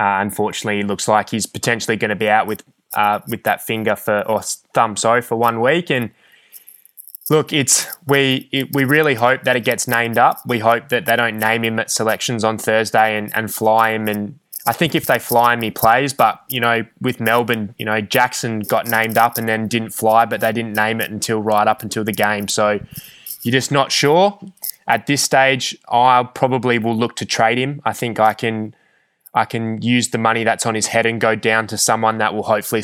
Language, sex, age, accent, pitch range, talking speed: English, male, 20-39, Australian, 105-115 Hz, 225 wpm